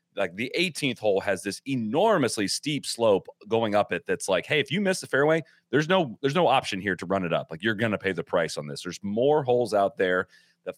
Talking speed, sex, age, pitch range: 245 wpm, male, 30-49, 95-140 Hz